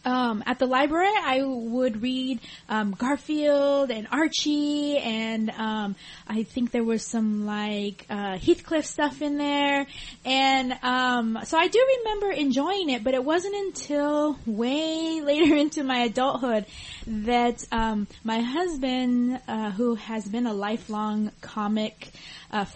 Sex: female